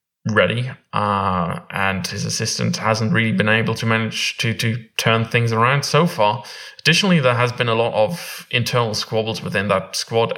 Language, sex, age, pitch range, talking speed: English, male, 20-39, 115-165 Hz, 175 wpm